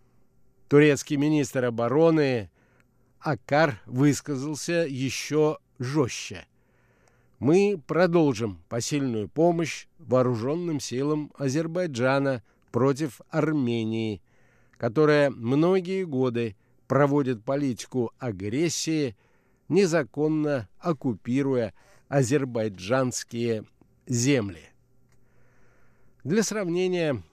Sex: male